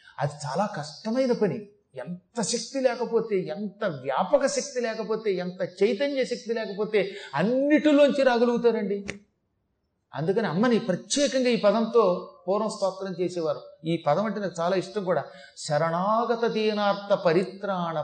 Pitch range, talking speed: 180-240 Hz, 115 wpm